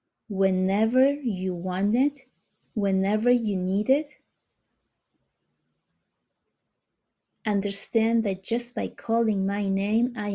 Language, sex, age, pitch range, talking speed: English, female, 30-49, 185-220 Hz, 95 wpm